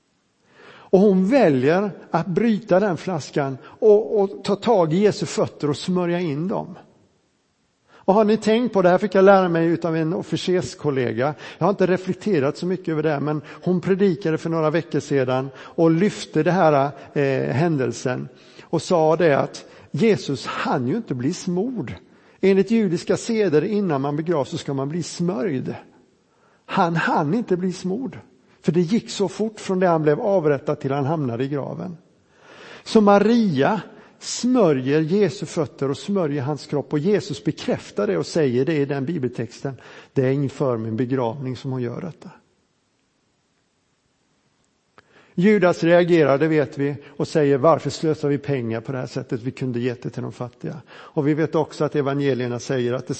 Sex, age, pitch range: male, 60-79, 140-185 Hz